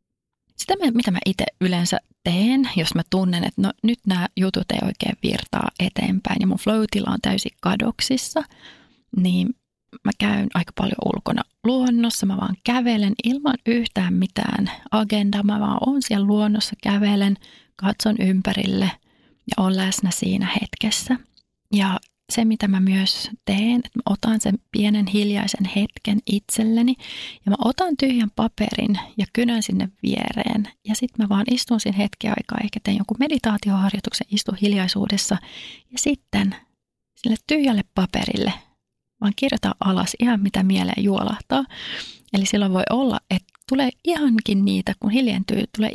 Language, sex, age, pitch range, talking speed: Finnish, female, 30-49, 200-235 Hz, 145 wpm